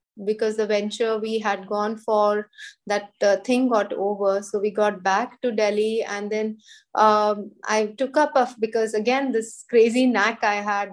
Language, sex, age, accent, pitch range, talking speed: English, female, 20-39, Indian, 210-245 Hz, 170 wpm